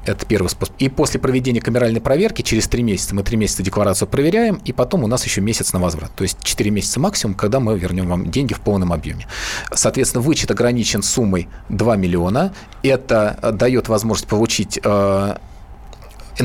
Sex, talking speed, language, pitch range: male, 170 wpm, Russian, 105-135 Hz